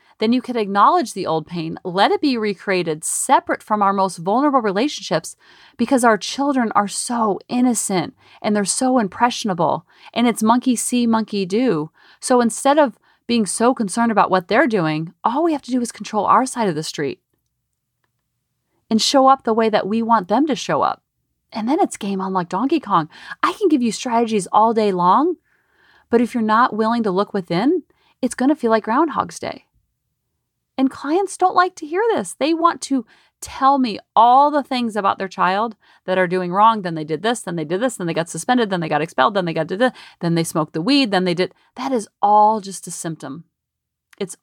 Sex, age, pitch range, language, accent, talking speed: female, 30-49, 185-260 Hz, English, American, 210 wpm